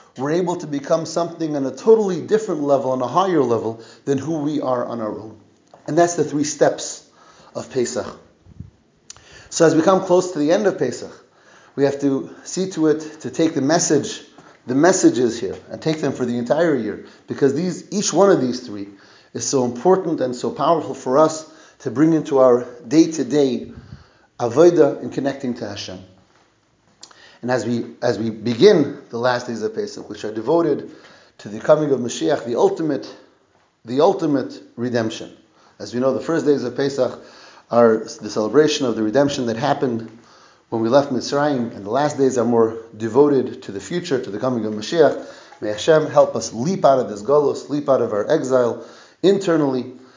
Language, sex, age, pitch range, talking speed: English, male, 30-49, 115-150 Hz, 190 wpm